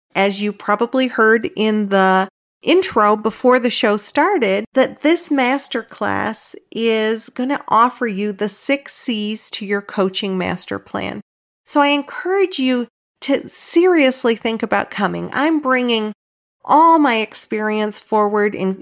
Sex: female